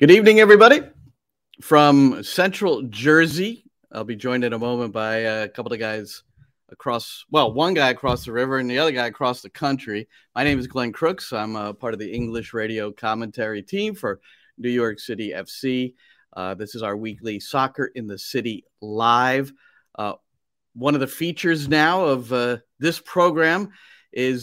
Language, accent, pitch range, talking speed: English, American, 115-155 Hz, 175 wpm